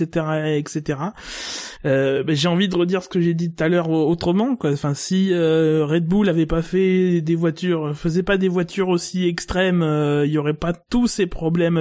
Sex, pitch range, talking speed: male, 160-195 Hz, 205 wpm